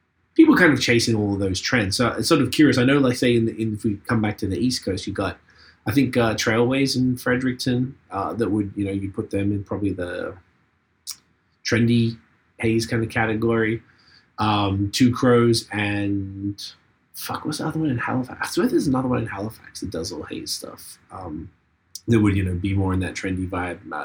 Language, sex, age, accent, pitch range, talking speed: English, male, 20-39, American, 95-120 Hz, 215 wpm